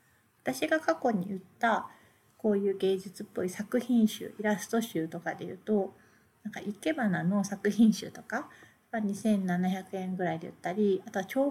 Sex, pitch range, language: female, 190-240 Hz, Japanese